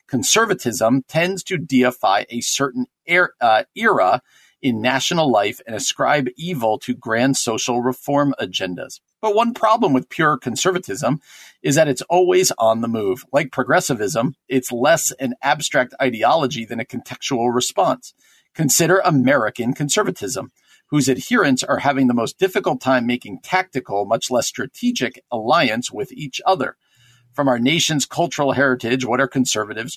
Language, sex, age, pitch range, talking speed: English, male, 50-69, 120-145 Hz, 145 wpm